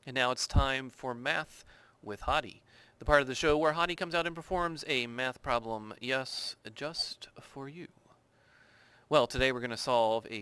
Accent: American